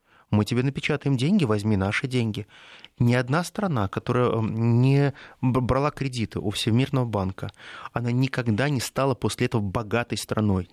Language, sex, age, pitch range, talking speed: Russian, male, 20-39, 110-145 Hz, 140 wpm